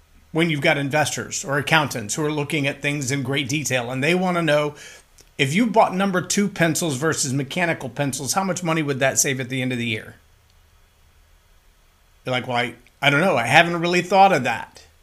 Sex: male